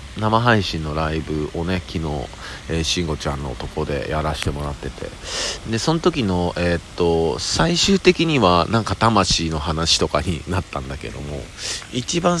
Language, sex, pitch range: Japanese, male, 75-100 Hz